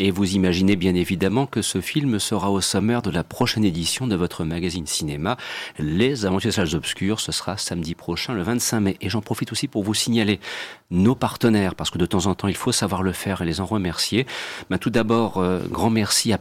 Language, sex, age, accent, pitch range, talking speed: French, male, 40-59, French, 90-110 Hz, 225 wpm